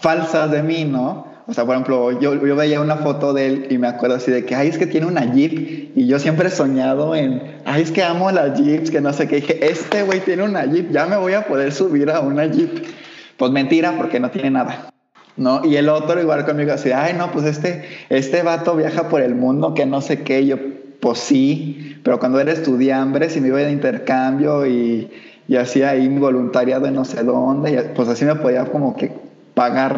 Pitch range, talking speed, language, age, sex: 130-155 Hz, 230 wpm, Spanish, 20-39, male